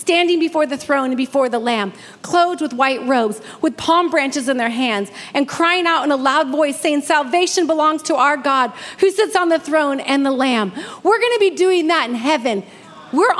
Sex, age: female, 40-59